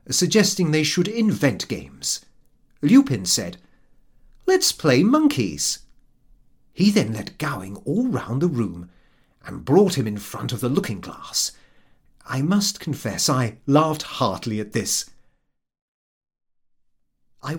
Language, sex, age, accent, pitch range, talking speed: English, male, 40-59, British, 125-210 Hz, 120 wpm